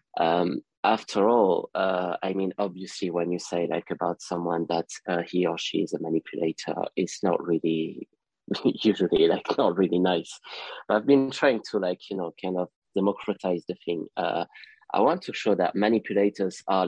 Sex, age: male, 20-39